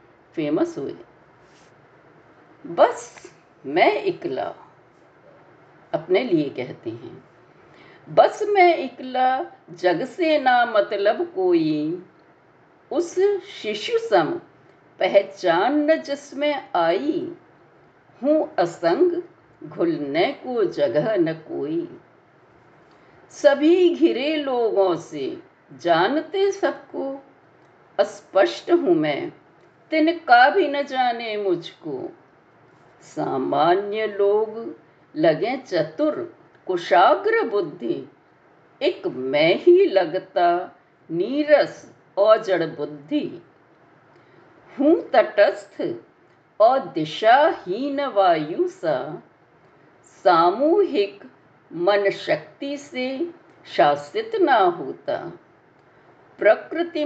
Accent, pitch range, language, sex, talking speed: native, 235-350 Hz, Hindi, female, 75 wpm